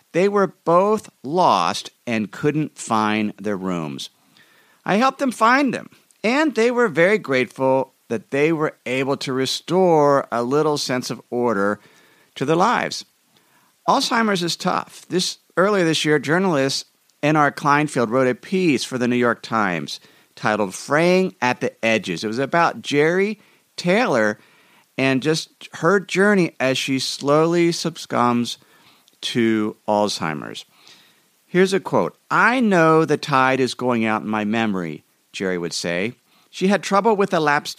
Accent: American